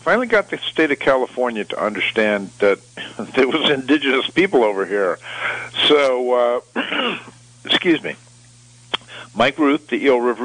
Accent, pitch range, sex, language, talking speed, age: American, 105-130 Hz, male, English, 140 wpm, 50-69